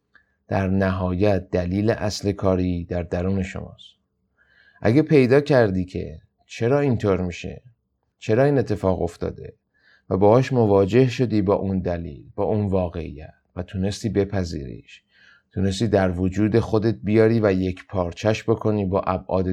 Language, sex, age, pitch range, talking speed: Persian, male, 30-49, 90-105 Hz, 130 wpm